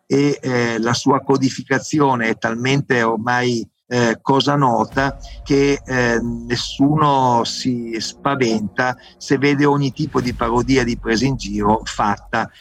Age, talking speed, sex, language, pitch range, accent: 50-69, 130 wpm, male, Italian, 115-140 Hz, native